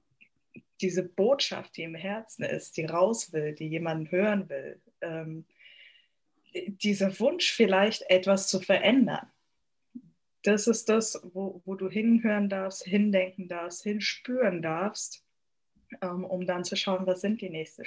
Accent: German